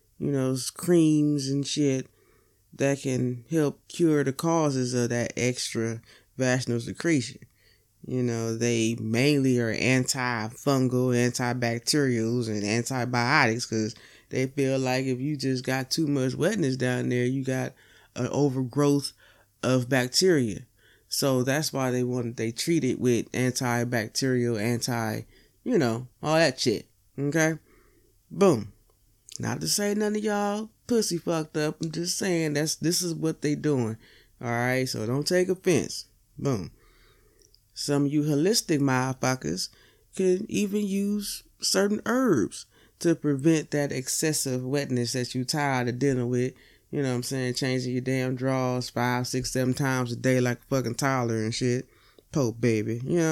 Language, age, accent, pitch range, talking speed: English, 20-39, American, 120-145 Hz, 145 wpm